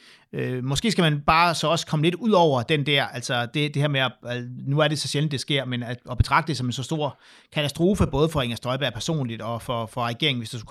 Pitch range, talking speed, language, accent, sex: 125-155 Hz, 265 wpm, Danish, native, male